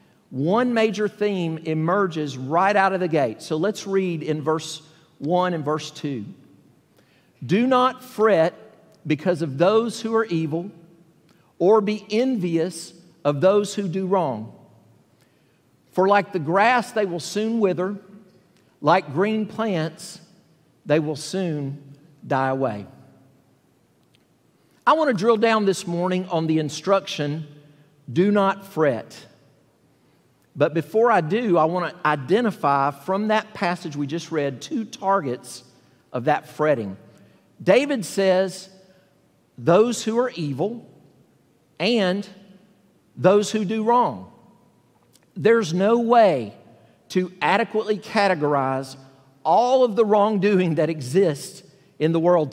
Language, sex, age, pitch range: English, male, 50-69, 150-200 Hz